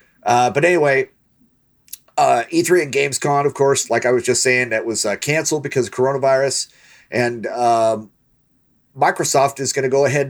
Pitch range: 125-150 Hz